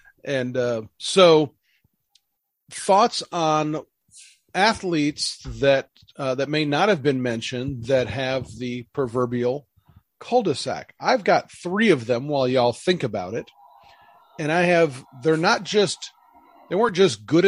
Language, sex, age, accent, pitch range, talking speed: English, male, 40-59, American, 125-170 Hz, 135 wpm